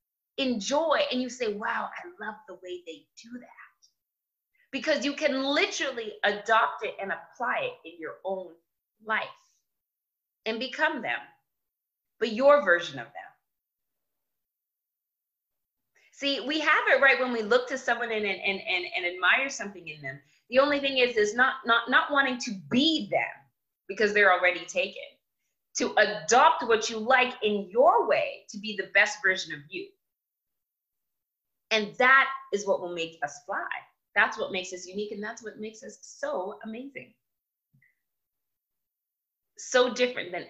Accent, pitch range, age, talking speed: American, 205-275 Hz, 30-49, 155 wpm